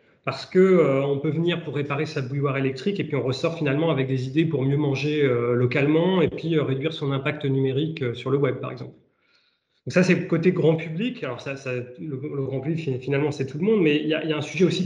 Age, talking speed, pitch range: 30-49, 250 wpm, 135-165 Hz